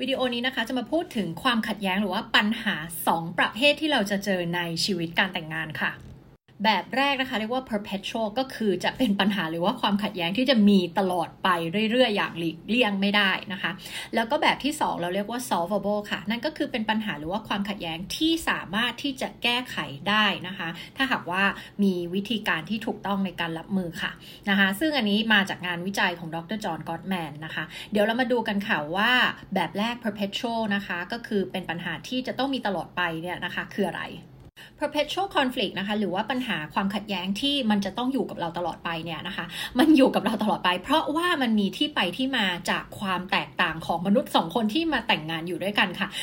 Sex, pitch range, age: female, 185-245 Hz, 20-39